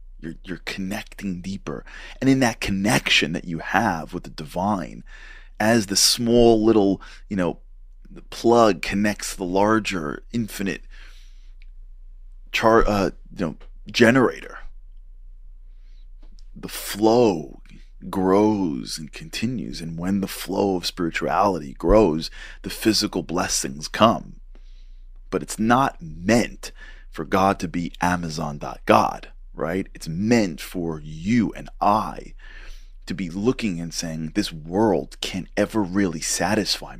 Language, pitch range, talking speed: English, 80-105 Hz, 120 wpm